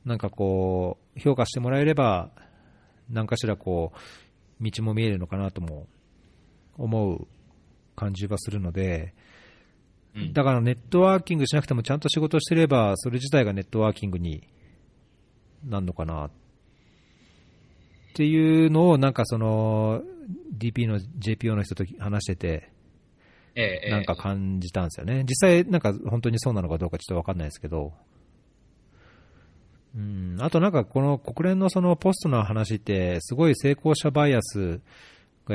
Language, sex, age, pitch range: Japanese, male, 40-59, 90-135 Hz